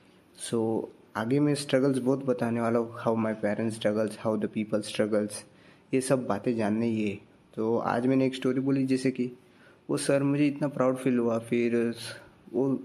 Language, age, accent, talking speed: Hindi, 20-39, native, 175 wpm